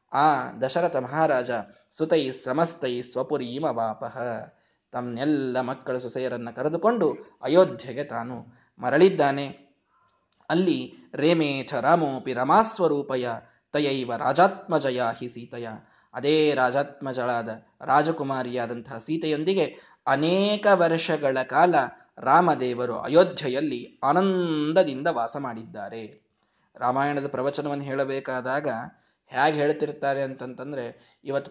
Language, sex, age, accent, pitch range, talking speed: Kannada, male, 20-39, native, 130-170 Hz, 80 wpm